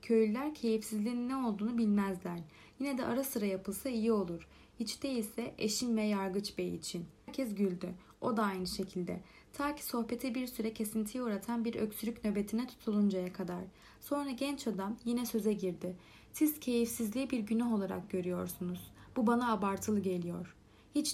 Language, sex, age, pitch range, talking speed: Turkish, female, 30-49, 195-240 Hz, 155 wpm